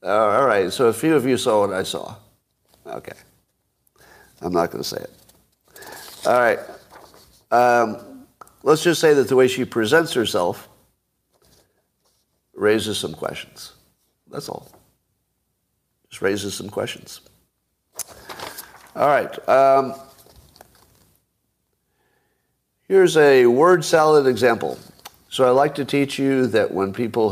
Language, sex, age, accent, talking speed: English, male, 50-69, American, 125 wpm